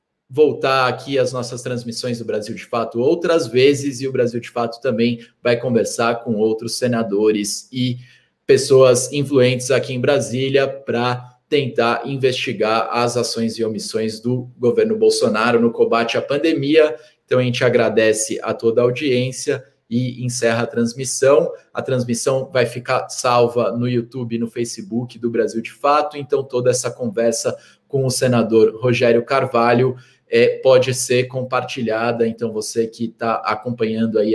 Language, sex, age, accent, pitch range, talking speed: Portuguese, male, 20-39, Brazilian, 115-135 Hz, 150 wpm